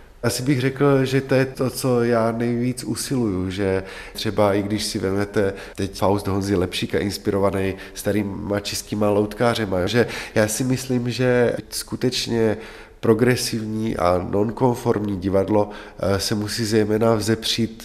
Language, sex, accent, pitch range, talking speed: Czech, male, native, 100-110 Hz, 130 wpm